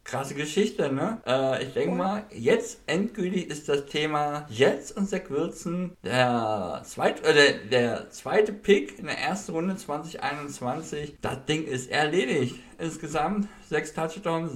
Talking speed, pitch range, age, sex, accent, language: 140 wpm, 130-185 Hz, 60-79, male, German, German